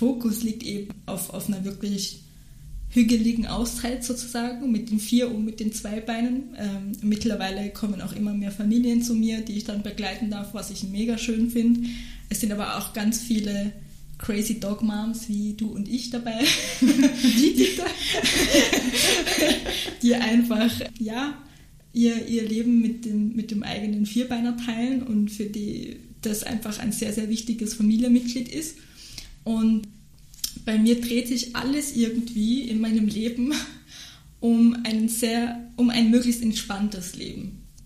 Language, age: German, 20-39